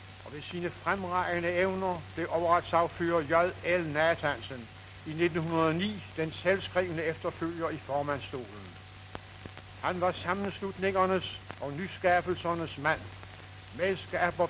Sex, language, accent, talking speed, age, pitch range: male, Danish, native, 95 wpm, 60-79, 140-180 Hz